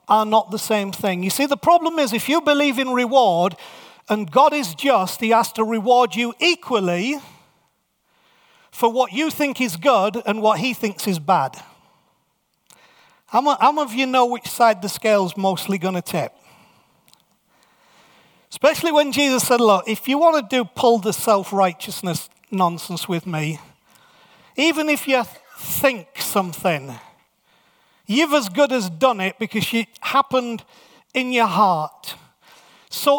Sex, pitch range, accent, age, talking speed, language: male, 215-280 Hz, British, 40-59, 150 wpm, English